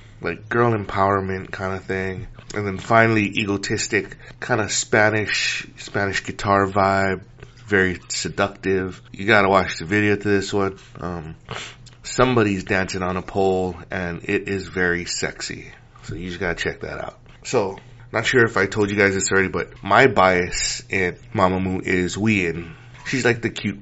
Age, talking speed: 30-49, 165 wpm